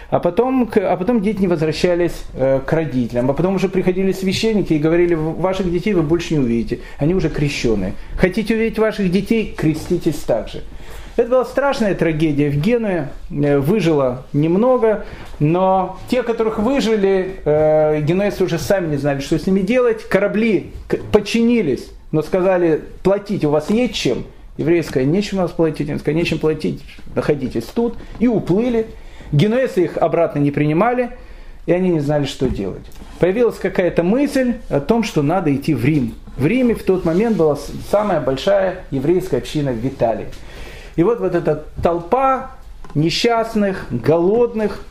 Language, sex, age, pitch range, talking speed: Russian, male, 40-59, 150-210 Hz, 155 wpm